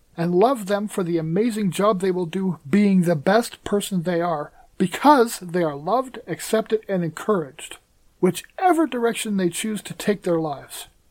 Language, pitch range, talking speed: English, 170-215 Hz, 170 wpm